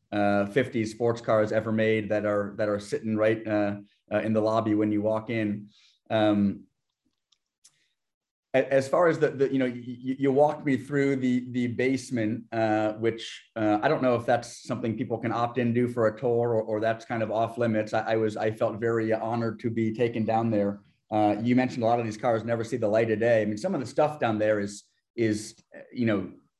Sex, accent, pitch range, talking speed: male, American, 110-130 Hz, 225 wpm